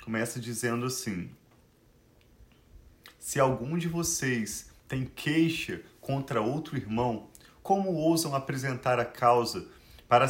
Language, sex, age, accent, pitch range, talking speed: Portuguese, male, 40-59, Brazilian, 120-140 Hz, 105 wpm